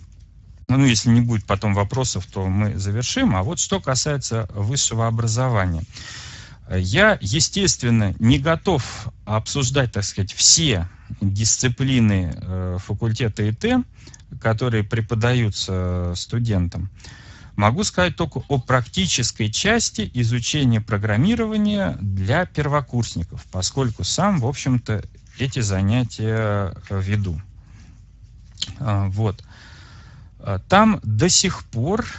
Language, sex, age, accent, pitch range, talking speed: Russian, male, 40-59, native, 100-125 Hz, 95 wpm